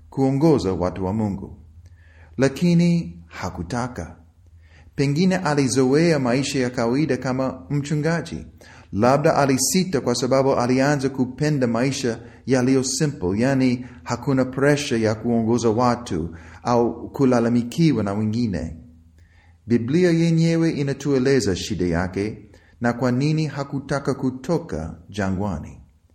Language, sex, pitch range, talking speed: Swahili, male, 90-140 Hz, 100 wpm